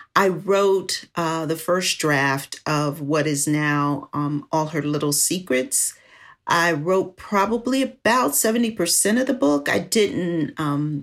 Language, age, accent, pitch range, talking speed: English, 40-59, American, 150-195 Hz, 140 wpm